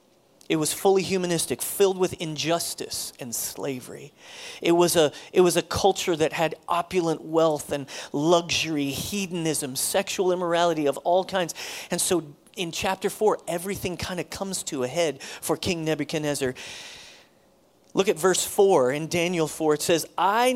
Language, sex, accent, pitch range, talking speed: English, male, American, 155-195 Hz, 150 wpm